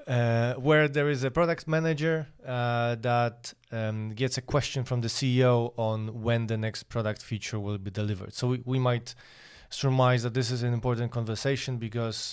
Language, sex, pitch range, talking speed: English, male, 115-140 Hz, 180 wpm